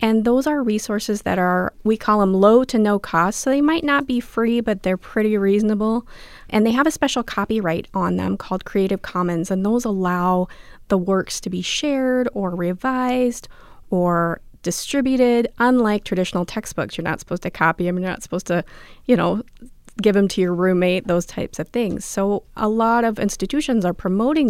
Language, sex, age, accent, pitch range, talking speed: English, female, 30-49, American, 190-255 Hz, 190 wpm